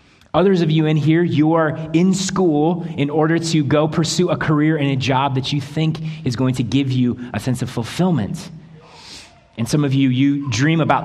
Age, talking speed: 30-49, 205 wpm